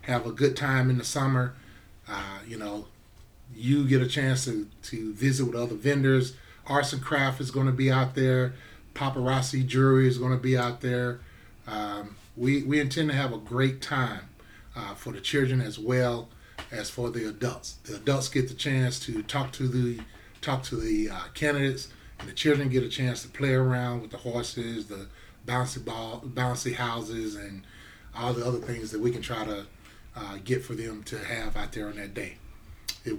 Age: 30-49